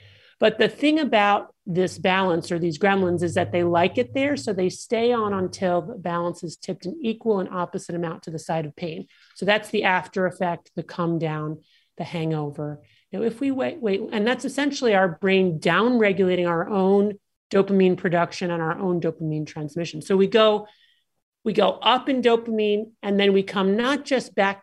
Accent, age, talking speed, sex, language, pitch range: American, 40-59, 195 wpm, male, English, 175-210 Hz